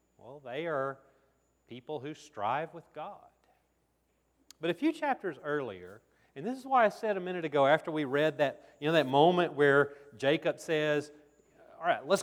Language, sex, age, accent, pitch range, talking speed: English, male, 40-59, American, 140-215 Hz, 175 wpm